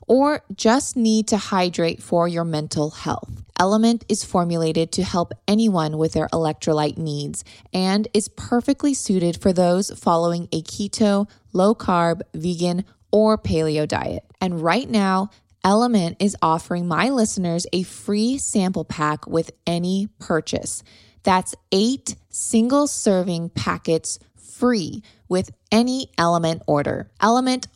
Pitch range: 170-220 Hz